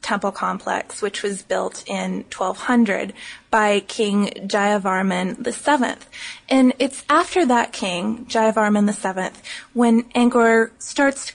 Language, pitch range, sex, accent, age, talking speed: English, 210-255 Hz, female, American, 20-39, 120 wpm